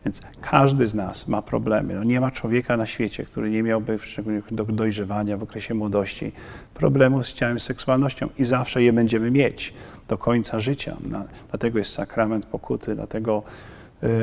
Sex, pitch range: male, 110-120 Hz